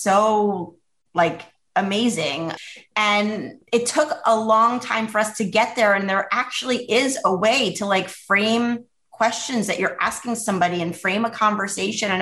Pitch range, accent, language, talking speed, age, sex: 180-235 Hz, American, English, 160 wpm, 30-49, female